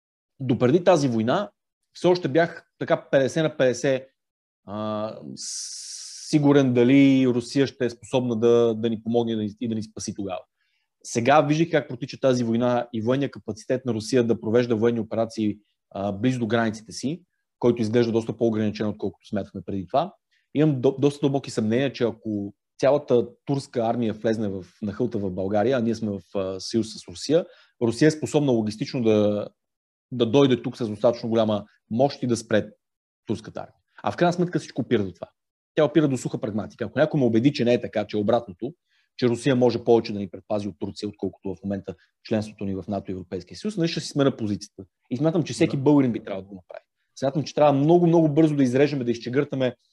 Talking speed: 195 wpm